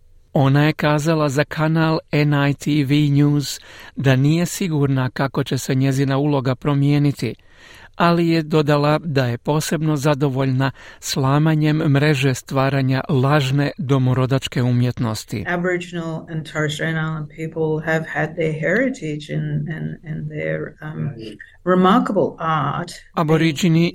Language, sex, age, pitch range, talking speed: Croatian, male, 50-69, 135-160 Hz, 75 wpm